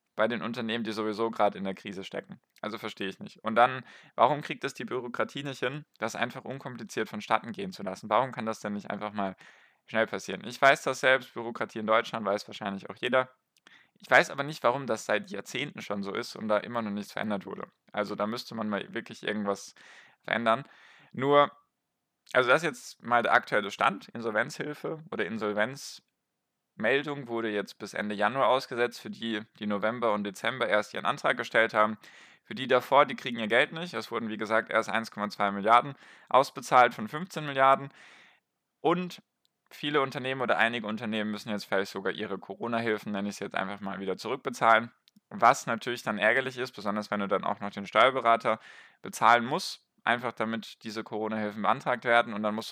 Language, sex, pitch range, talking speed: German, male, 105-130 Hz, 190 wpm